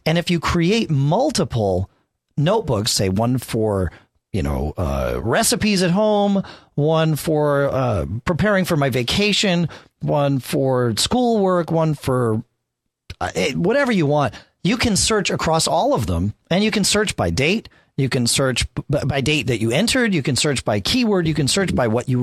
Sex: male